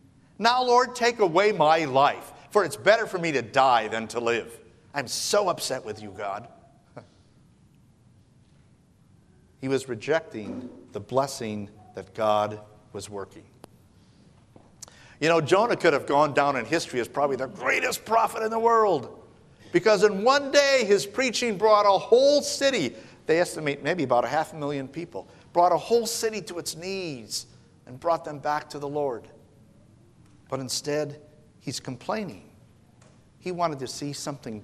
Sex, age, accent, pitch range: male, 50-69, American, 115-165 Hz